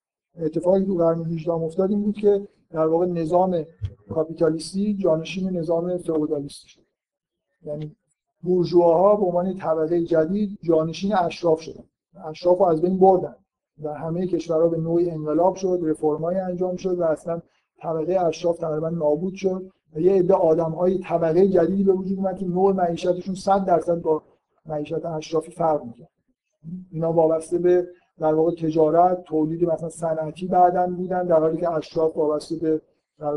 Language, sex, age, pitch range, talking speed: Persian, male, 50-69, 160-185 Hz, 145 wpm